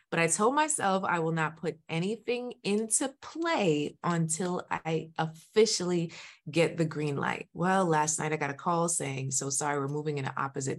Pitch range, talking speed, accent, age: 155-225 Hz, 185 wpm, American, 20-39